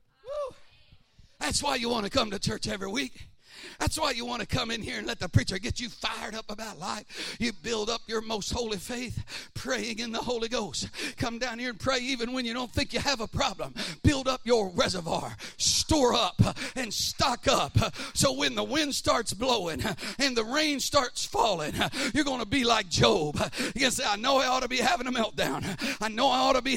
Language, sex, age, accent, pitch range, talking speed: English, male, 50-69, American, 235-275 Hz, 215 wpm